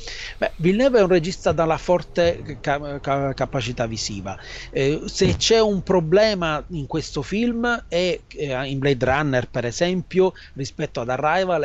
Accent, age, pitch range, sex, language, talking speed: native, 30-49, 140-175 Hz, male, Italian, 150 wpm